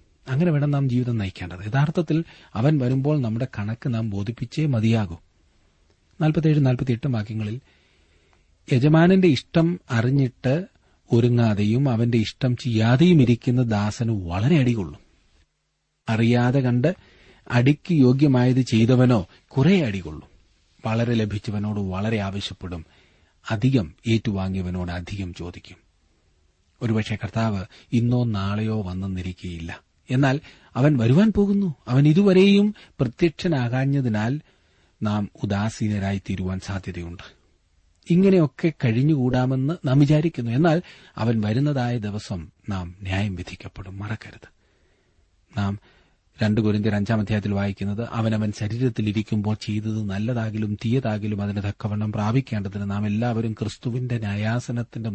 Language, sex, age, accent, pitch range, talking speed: Malayalam, male, 40-59, native, 95-125 Hz, 95 wpm